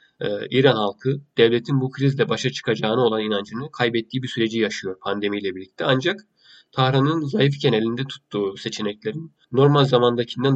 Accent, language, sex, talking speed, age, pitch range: native, Turkish, male, 130 wpm, 30-49, 110-135 Hz